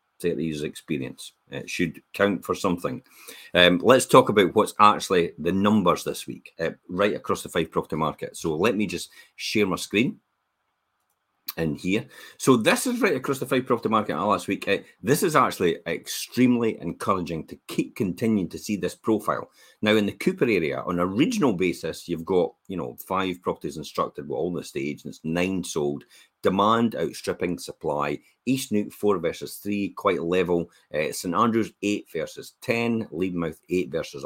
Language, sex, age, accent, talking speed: English, male, 40-59, British, 180 wpm